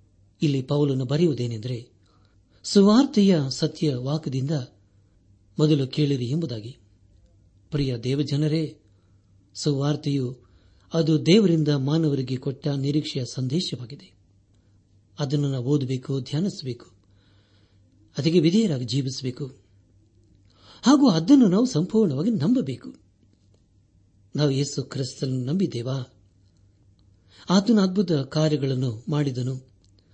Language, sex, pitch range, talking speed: Kannada, male, 100-150 Hz, 75 wpm